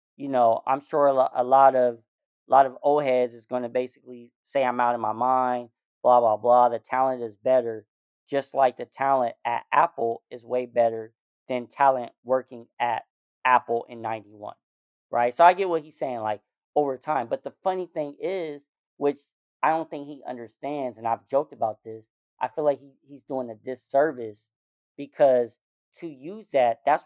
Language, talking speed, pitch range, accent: English, 185 wpm, 120-155 Hz, American